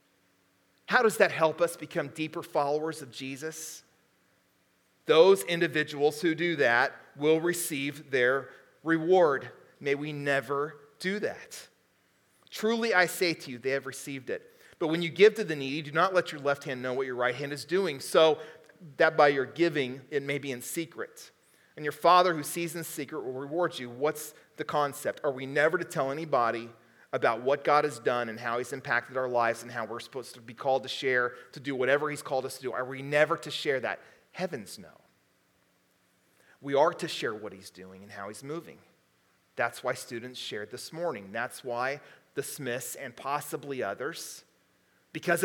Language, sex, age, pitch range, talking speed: English, male, 40-59, 130-175 Hz, 190 wpm